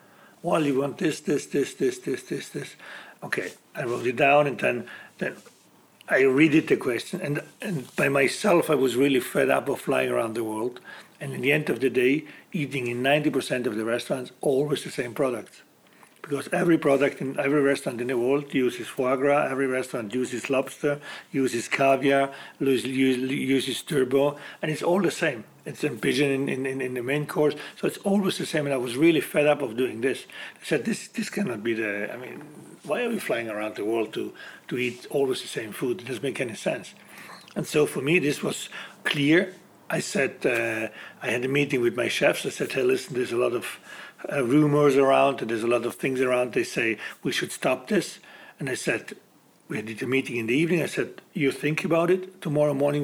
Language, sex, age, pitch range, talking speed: English, male, 60-79, 125-150 Hz, 215 wpm